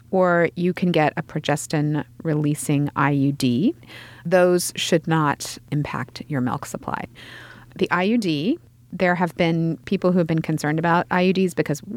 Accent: American